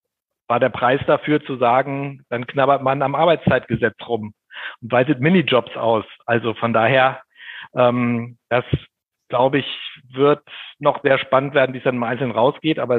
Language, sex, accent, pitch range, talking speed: German, male, German, 115-135 Hz, 160 wpm